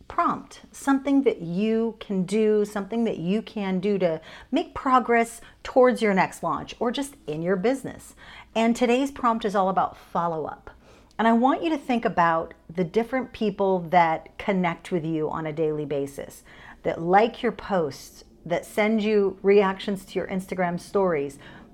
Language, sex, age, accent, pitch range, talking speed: English, female, 40-59, American, 180-235 Hz, 165 wpm